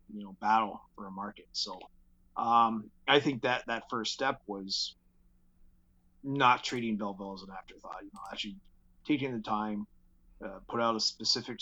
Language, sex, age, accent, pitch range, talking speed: English, male, 30-49, American, 95-115 Hz, 165 wpm